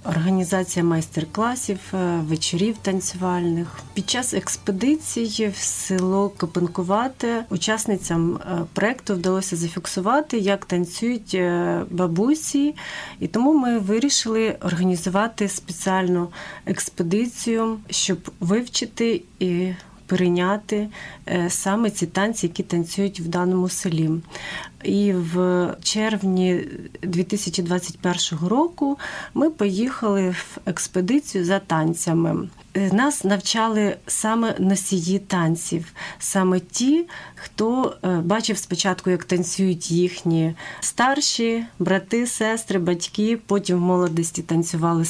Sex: female